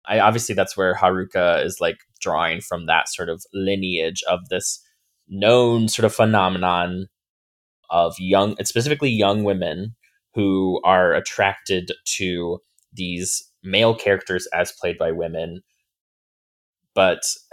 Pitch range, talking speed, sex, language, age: 85-115 Hz, 125 wpm, male, English, 20-39